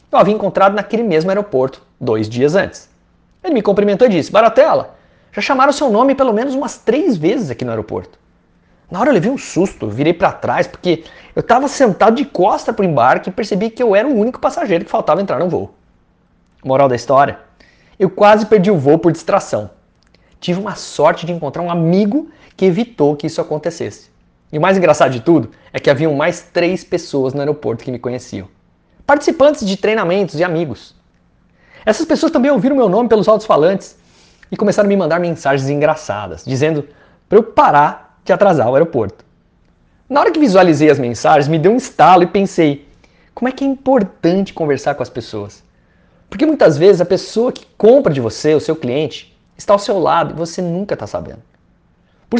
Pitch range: 150-220 Hz